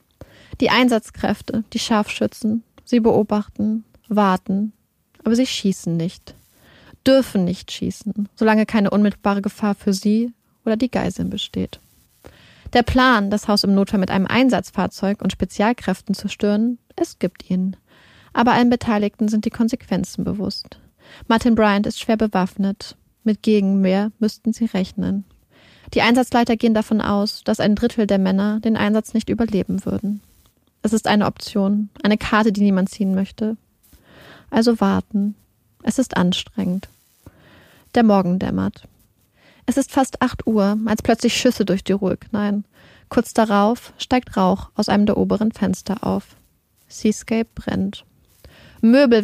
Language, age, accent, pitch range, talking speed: German, 30-49, German, 195-230 Hz, 140 wpm